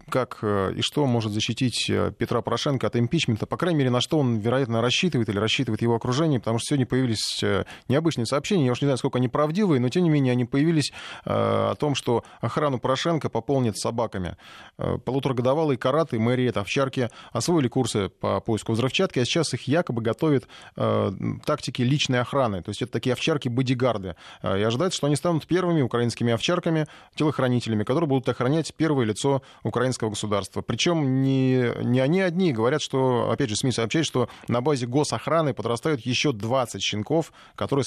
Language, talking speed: Russian, 165 wpm